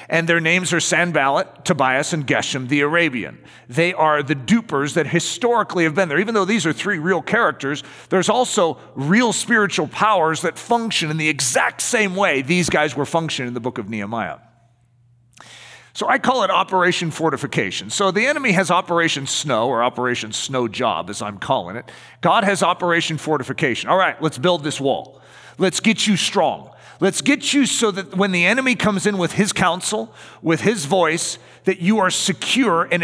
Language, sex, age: English, male, 40-59